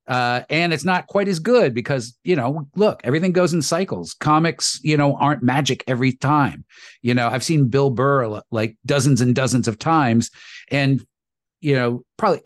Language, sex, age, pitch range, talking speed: English, male, 40-59, 135-190 Hz, 185 wpm